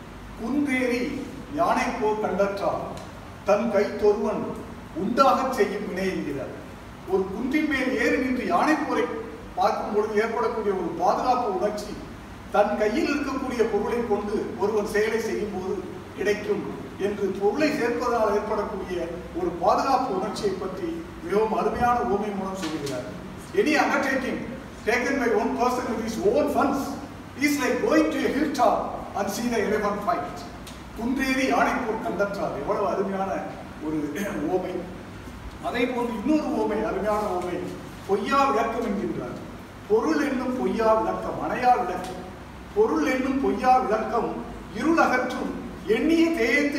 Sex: male